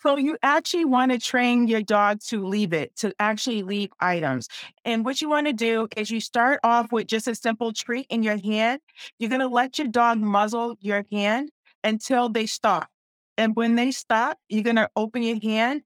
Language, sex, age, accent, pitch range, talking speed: English, female, 40-59, American, 210-245 Hz, 210 wpm